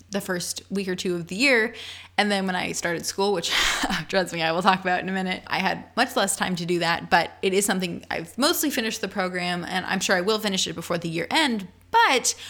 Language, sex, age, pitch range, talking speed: English, female, 20-39, 175-210 Hz, 255 wpm